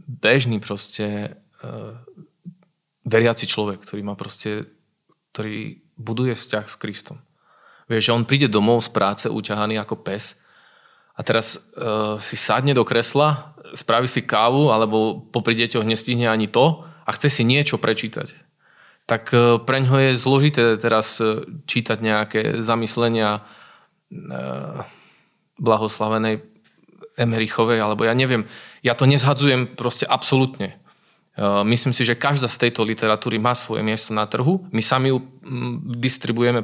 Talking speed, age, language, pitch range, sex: 130 wpm, 20-39, Slovak, 110-135 Hz, male